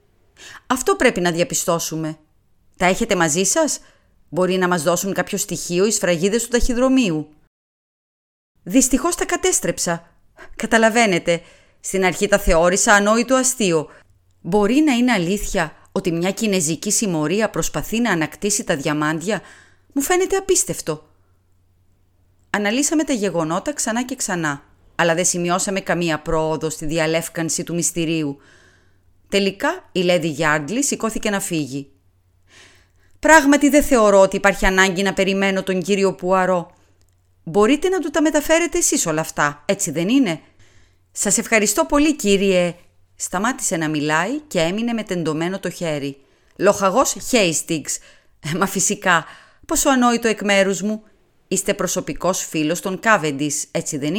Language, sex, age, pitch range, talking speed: Greek, female, 30-49, 155-220 Hz, 130 wpm